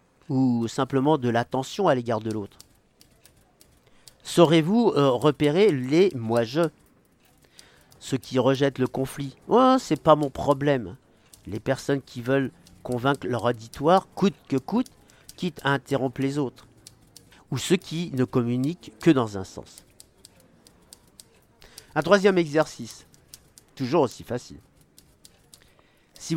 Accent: French